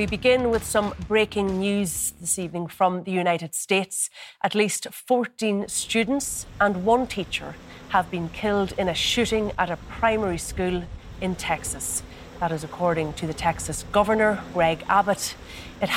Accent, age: Irish, 30-49